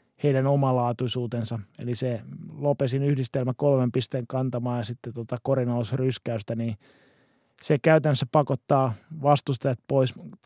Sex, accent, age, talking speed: male, native, 20-39, 105 wpm